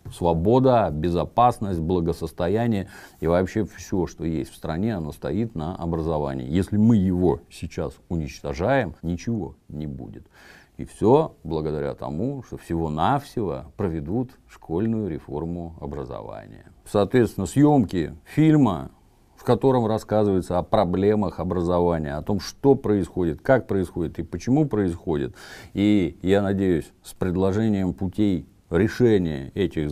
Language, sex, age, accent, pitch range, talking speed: Russian, male, 50-69, native, 80-105 Hz, 115 wpm